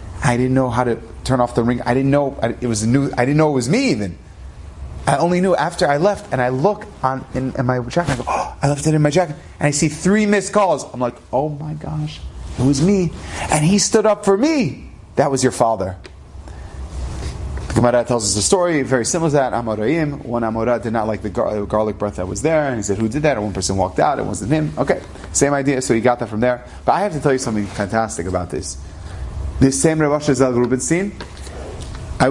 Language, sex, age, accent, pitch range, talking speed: English, male, 30-49, American, 95-135 Hz, 245 wpm